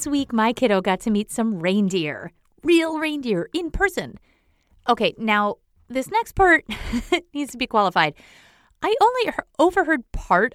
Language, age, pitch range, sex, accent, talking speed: English, 30-49, 215-310 Hz, female, American, 140 wpm